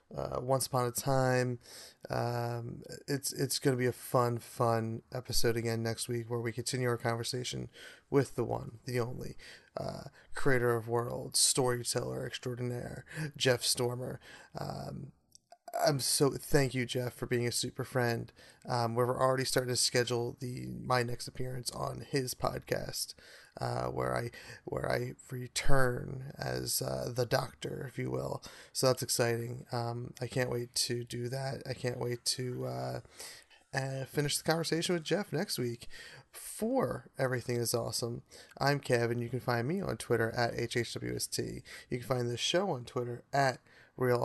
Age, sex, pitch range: 30-49, male, 120-130 Hz